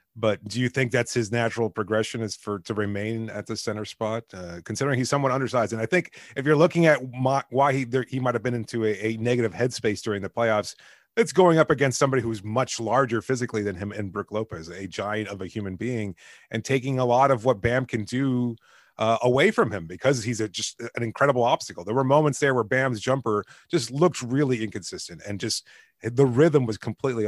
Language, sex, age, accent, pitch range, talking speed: English, male, 30-49, American, 110-130 Hz, 215 wpm